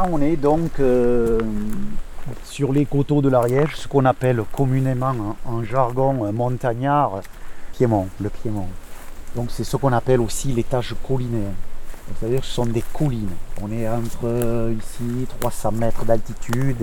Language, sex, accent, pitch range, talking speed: French, male, French, 110-135 Hz, 145 wpm